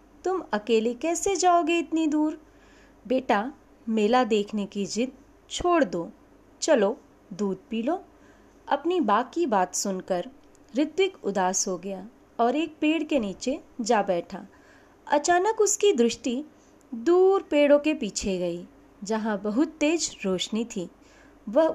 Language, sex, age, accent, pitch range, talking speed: Hindi, female, 30-49, native, 210-325 Hz, 125 wpm